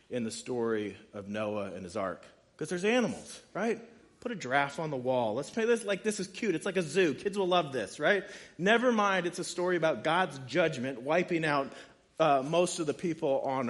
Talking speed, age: 220 wpm, 40-59